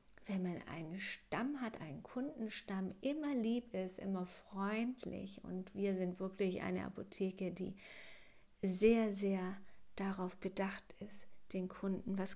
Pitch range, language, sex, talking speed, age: 185-225 Hz, German, female, 130 wpm, 50-69